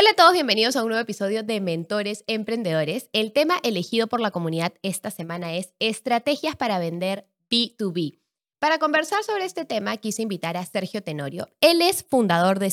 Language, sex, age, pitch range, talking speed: Spanish, female, 10-29, 195-270 Hz, 190 wpm